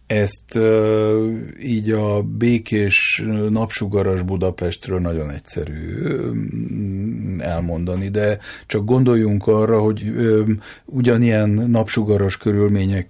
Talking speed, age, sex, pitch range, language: 80 wpm, 50-69, male, 85-110 Hz, Hungarian